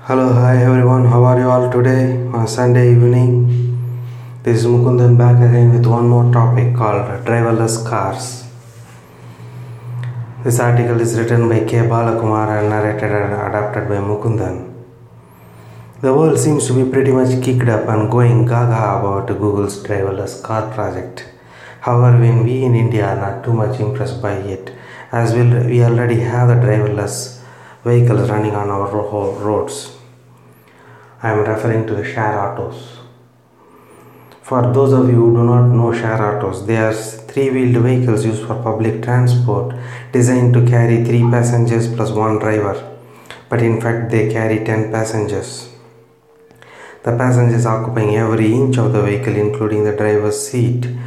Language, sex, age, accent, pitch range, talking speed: English, male, 30-49, Indian, 105-120 Hz, 155 wpm